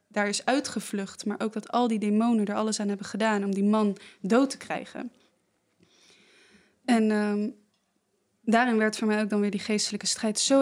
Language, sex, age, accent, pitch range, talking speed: Dutch, female, 20-39, Dutch, 205-235 Hz, 185 wpm